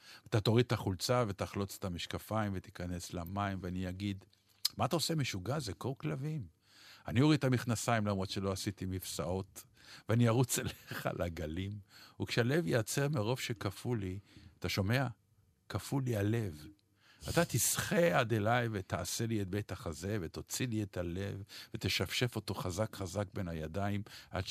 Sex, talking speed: male, 145 wpm